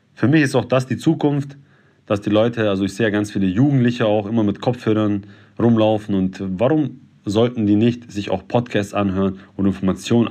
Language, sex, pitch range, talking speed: German, male, 100-130 Hz, 190 wpm